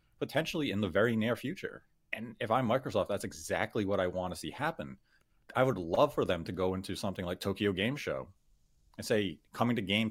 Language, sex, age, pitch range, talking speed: English, male, 30-49, 90-110 Hz, 215 wpm